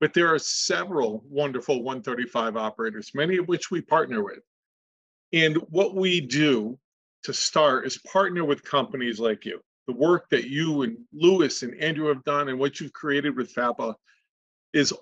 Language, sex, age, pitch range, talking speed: English, male, 40-59, 125-160 Hz, 170 wpm